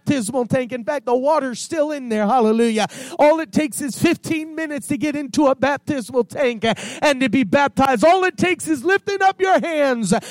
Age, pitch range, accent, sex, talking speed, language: 40-59, 220-265 Hz, American, male, 200 wpm, English